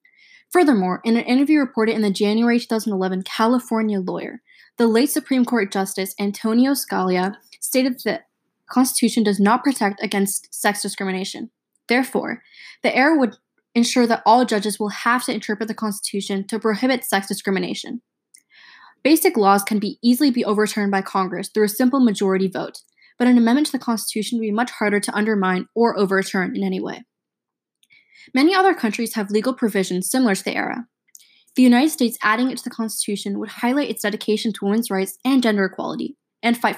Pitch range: 200-250 Hz